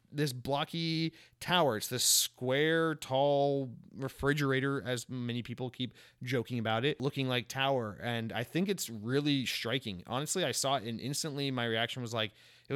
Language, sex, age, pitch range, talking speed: English, male, 30-49, 115-145 Hz, 165 wpm